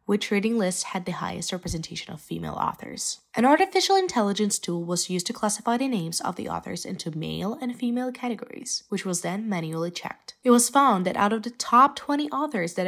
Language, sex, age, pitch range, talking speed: English, female, 20-39, 170-230 Hz, 205 wpm